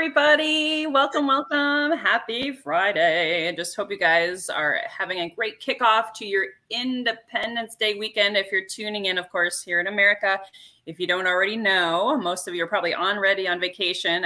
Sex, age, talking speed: female, 20-39, 175 wpm